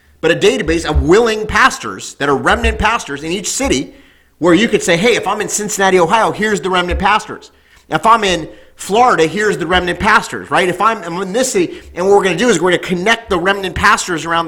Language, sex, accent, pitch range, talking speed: English, male, American, 160-225 Hz, 225 wpm